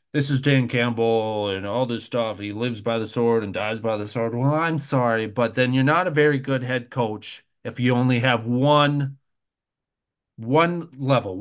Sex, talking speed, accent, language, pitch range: male, 195 wpm, American, English, 120-170 Hz